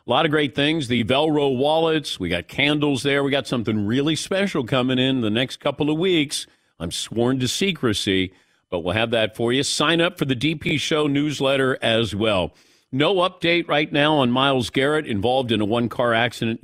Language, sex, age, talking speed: English, male, 50-69, 200 wpm